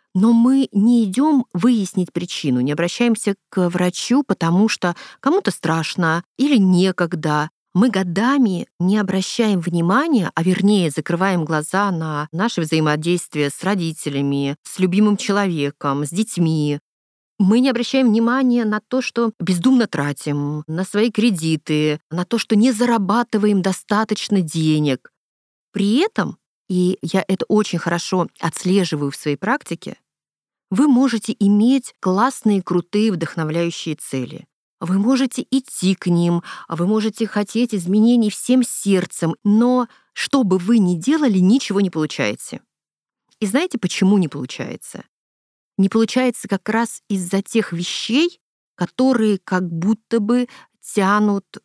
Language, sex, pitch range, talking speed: Russian, female, 170-230 Hz, 125 wpm